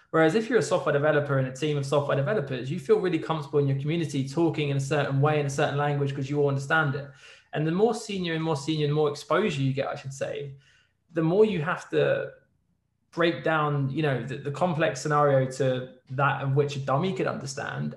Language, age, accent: English, 20-39, British